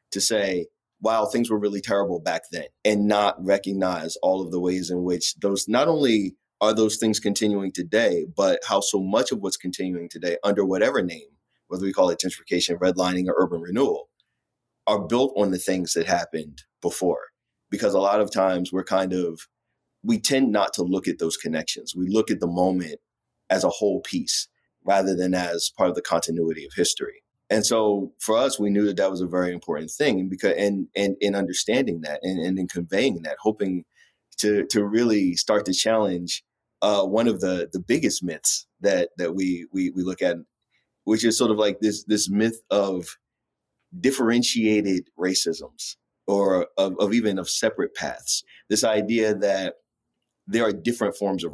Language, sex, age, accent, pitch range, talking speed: English, male, 30-49, American, 90-105 Hz, 185 wpm